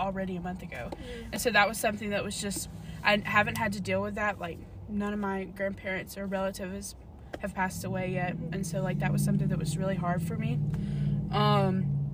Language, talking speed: English, 215 wpm